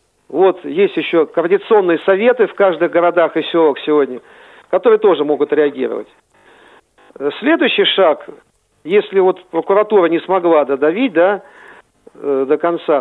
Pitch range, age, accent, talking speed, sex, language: 160-240 Hz, 50-69, native, 120 wpm, male, Russian